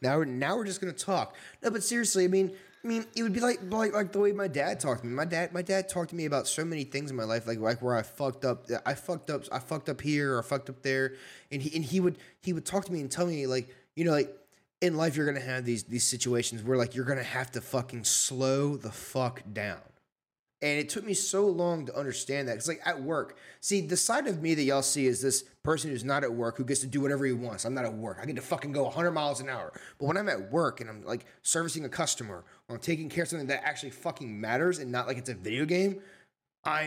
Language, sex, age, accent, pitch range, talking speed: English, male, 20-39, American, 125-170 Hz, 285 wpm